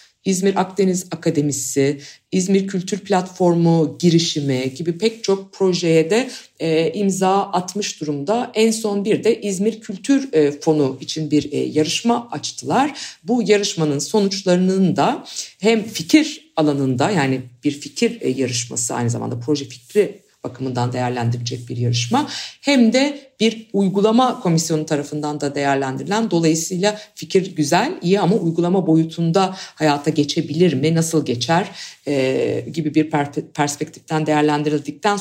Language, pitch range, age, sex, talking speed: Turkish, 145-200 Hz, 50-69, female, 120 wpm